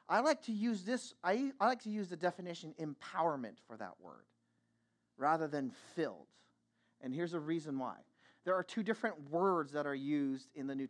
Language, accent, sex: English, American, male